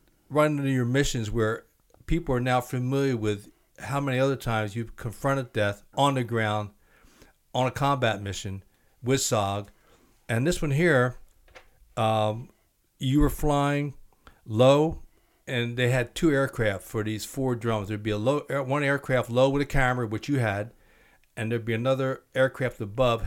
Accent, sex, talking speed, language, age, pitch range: American, male, 160 wpm, English, 60-79, 110-135 Hz